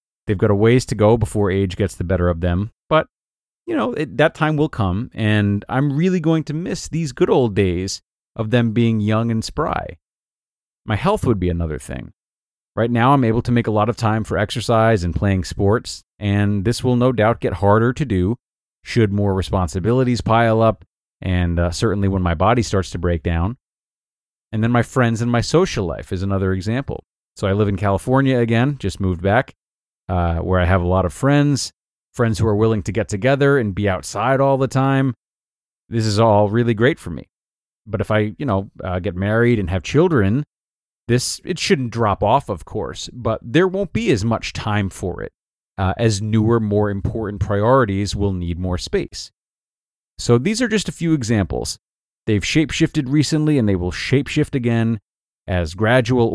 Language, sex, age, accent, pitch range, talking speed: English, male, 30-49, American, 95-125 Hz, 195 wpm